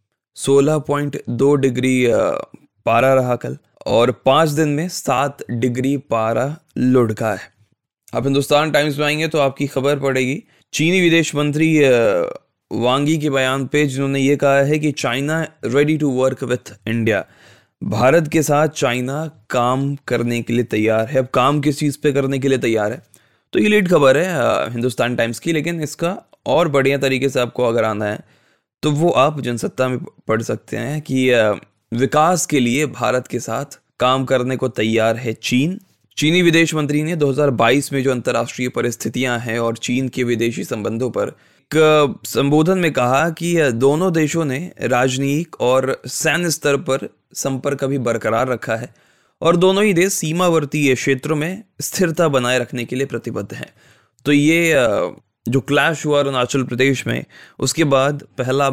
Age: 20-39